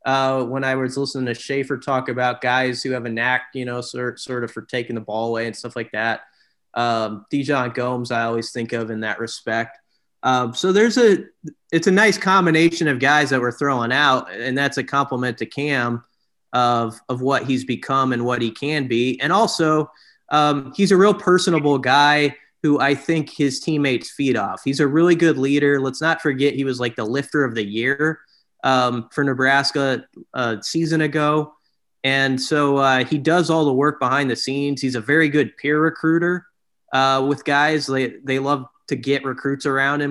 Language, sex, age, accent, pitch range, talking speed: English, male, 30-49, American, 125-150 Hz, 200 wpm